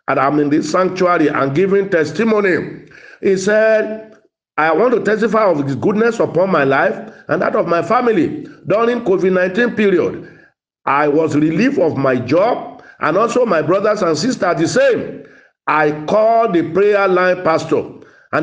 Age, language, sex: 50-69, English, male